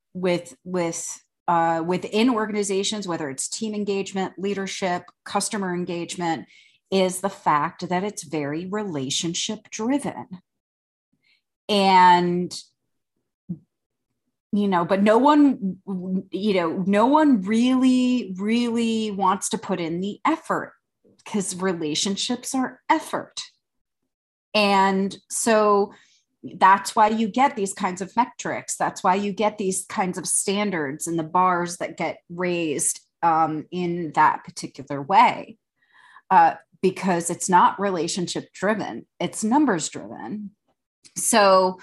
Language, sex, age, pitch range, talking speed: English, female, 30-49, 175-215 Hz, 115 wpm